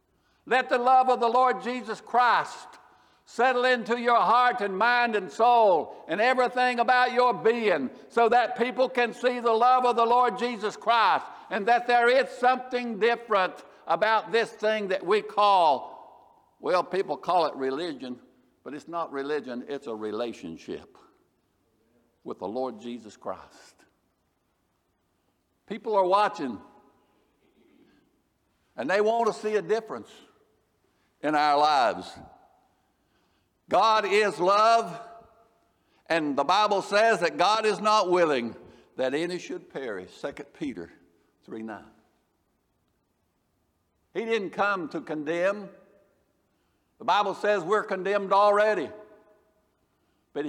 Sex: male